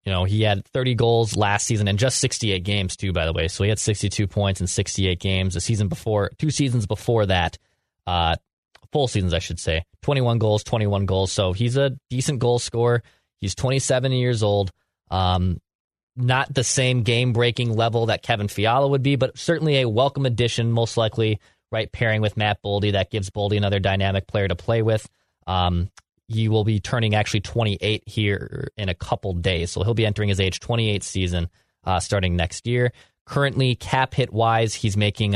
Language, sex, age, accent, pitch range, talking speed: English, male, 20-39, American, 100-120 Hz, 190 wpm